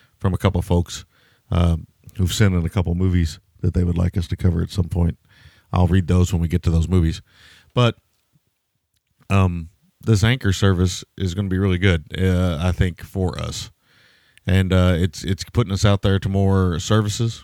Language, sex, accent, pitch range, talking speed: English, male, American, 85-100 Hz, 205 wpm